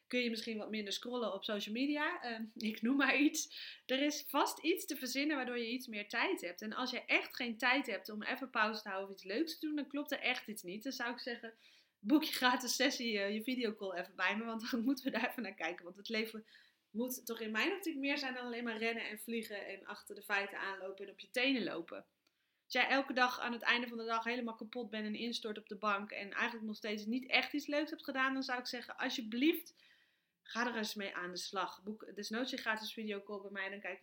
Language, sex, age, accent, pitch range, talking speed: Dutch, female, 20-39, Dutch, 215-265 Hz, 260 wpm